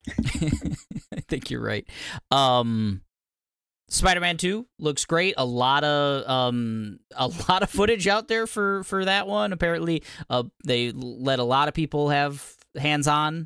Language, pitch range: English, 120-155 Hz